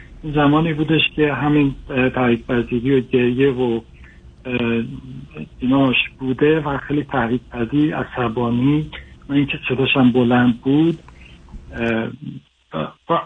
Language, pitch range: Persian, 125-150 Hz